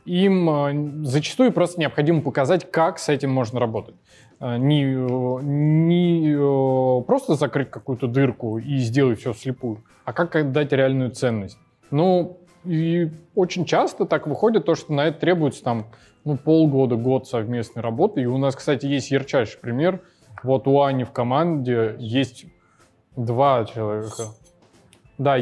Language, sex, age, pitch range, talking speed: Russian, male, 20-39, 125-150 Hz, 135 wpm